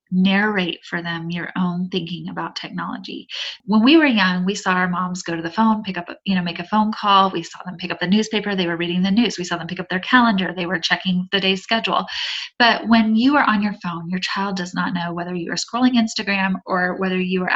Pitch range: 180-220 Hz